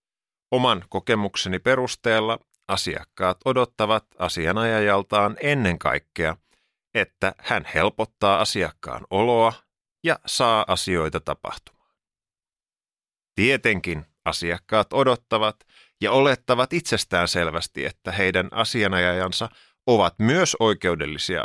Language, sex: Finnish, male